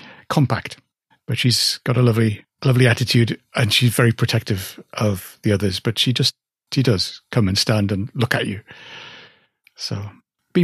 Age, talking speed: 60-79, 165 wpm